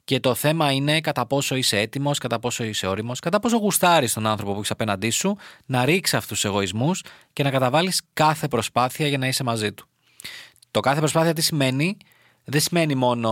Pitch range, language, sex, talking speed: 105-155 Hz, Greek, male, 200 wpm